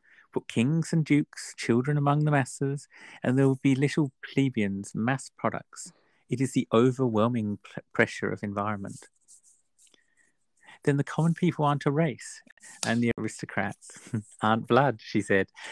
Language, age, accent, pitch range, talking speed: English, 50-69, British, 110-145 Hz, 140 wpm